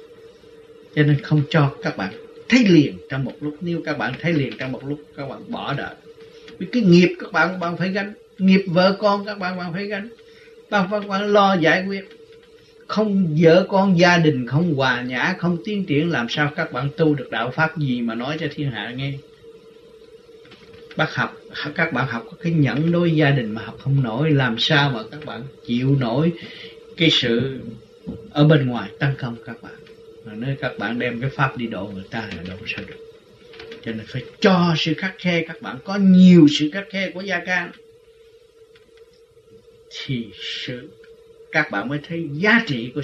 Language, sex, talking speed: Vietnamese, male, 200 wpm